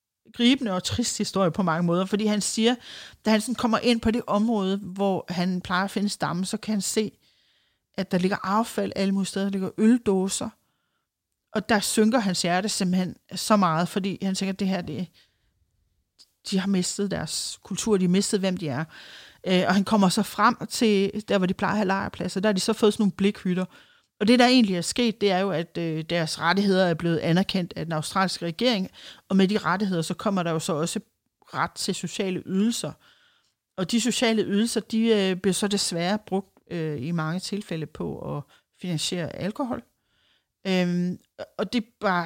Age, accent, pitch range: 30-49, native, 180-215 Hz